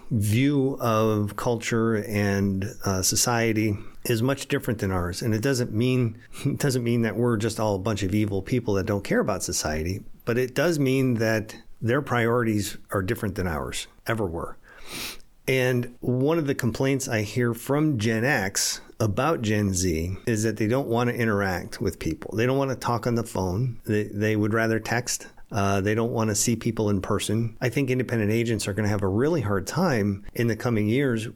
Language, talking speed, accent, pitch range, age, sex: English, 200 wpm, American, 105-125 Hz, 50-69, male